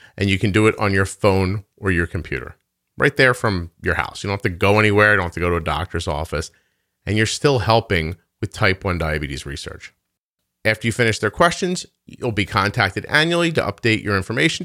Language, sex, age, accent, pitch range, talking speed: English, male, 40-59, American, 95-125 Hz, 215 wpm